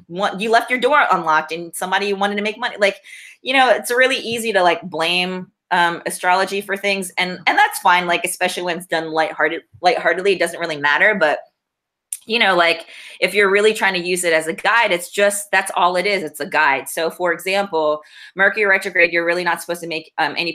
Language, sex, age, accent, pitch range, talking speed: English, female, 20-39, American, 165-200 Hz, 220 wpm